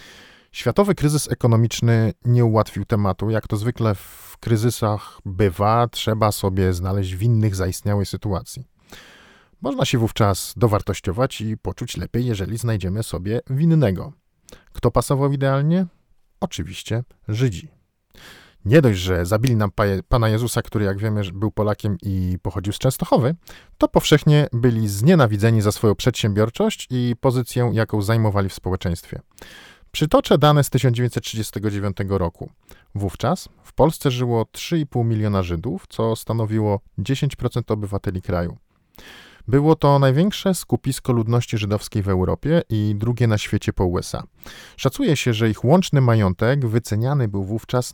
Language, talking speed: Polish, 130 wpm